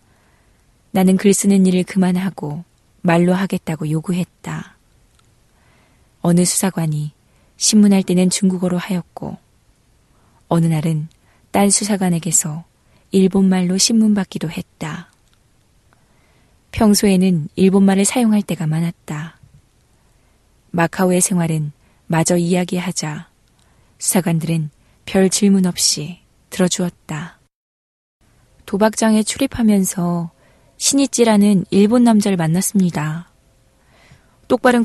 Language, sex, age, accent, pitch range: Korean, female, 20-39, native, 165-205 Hz